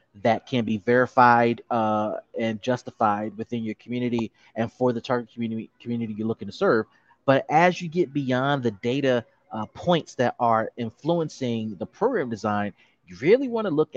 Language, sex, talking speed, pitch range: English, male, 170 wpm, 115-140 Hz